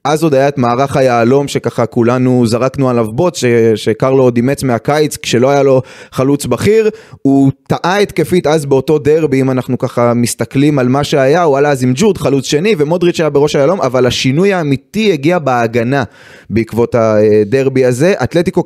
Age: 20-39